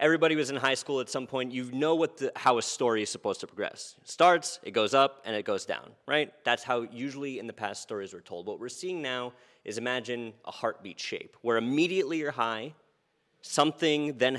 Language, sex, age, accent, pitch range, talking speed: English, male, 30-49, American, 105-150 Hz, 220 wpm